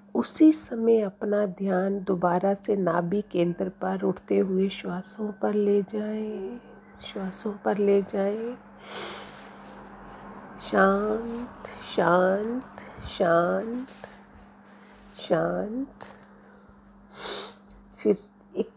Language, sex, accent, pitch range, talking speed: Hindi, female, native, 200-225 Hz, 80 wpm